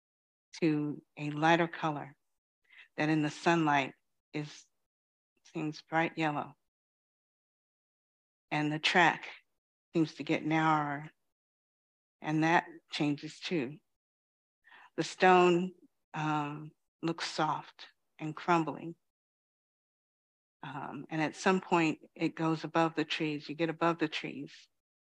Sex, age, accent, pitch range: female, 60-79, American, 145-160 Hz